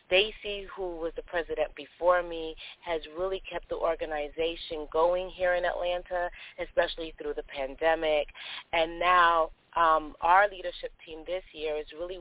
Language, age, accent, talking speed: English, 30-49, American, 145 wpm